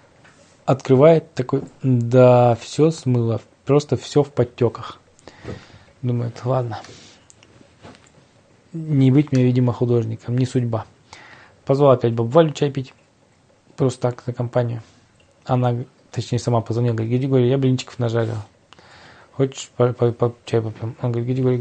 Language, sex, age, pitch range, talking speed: Russian, male, 20-39, 115-135 Hz, 115 wpm